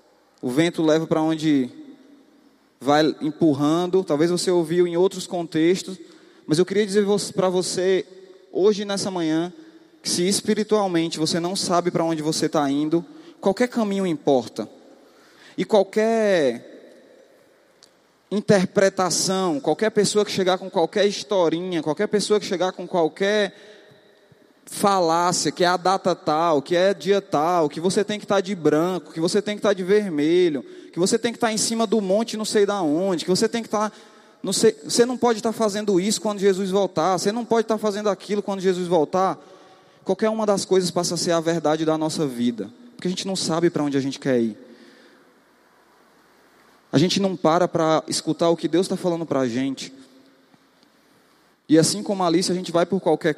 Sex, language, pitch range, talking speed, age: male, Portuguese, 165-210 Hz, 185 wpm, 20-39